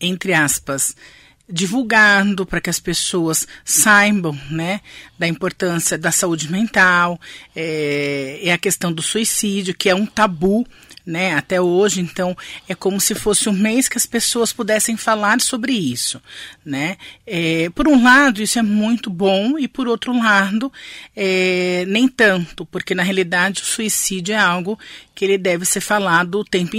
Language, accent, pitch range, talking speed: Portuguese, Brazilian, 170-215 Hz, 160 wpm